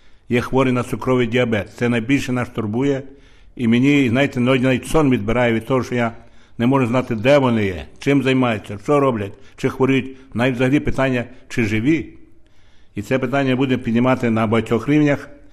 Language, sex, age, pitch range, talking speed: Ukrainian, male, 60-79, 105-125 Hz, 170 wpm